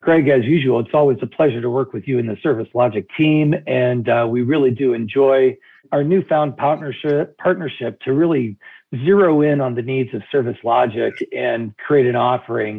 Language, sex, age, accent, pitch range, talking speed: English, male, 50-69, American, 120-150 Hz, 190 wpm